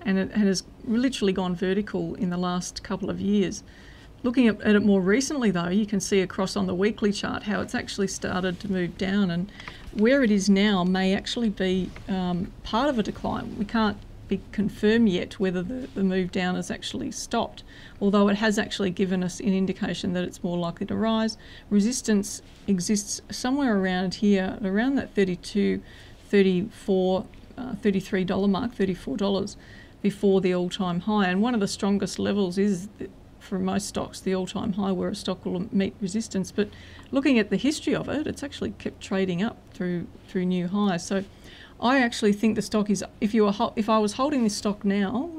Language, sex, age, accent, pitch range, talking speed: English, female, 40-59, Australian, 185-215 Hz, 185 wpm